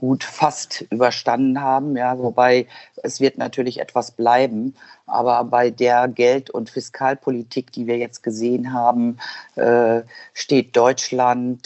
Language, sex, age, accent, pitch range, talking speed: German, female, 50-69, German, 115-125 Hz, 130 wpm